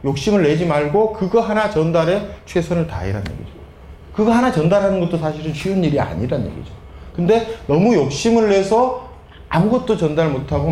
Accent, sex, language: native, male, Korean